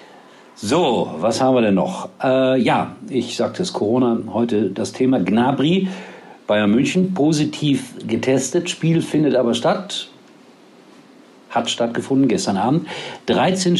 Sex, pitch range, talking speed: male, 115-140 Hz, 125 wpm